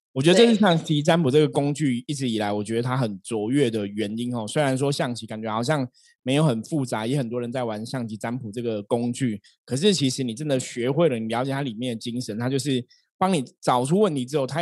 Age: 20-39